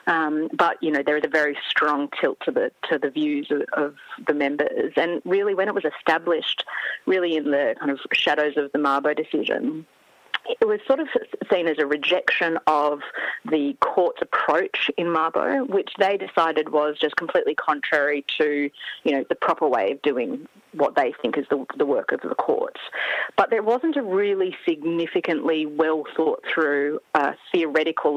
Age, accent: 30-49, Australian